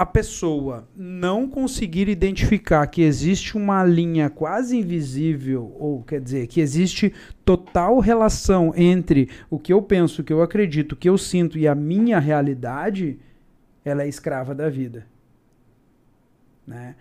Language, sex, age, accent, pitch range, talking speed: Portuguese, male, 40-59, Brazilian, 150-195 Hz, 145 wpm